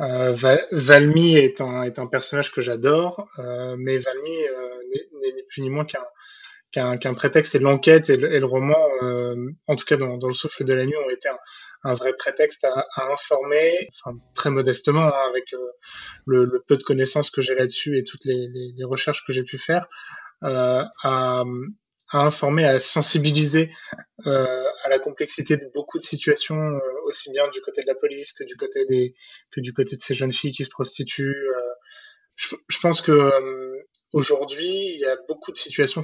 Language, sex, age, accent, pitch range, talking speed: French, male, 20-39, French, 130-170 Hz, 205 wpm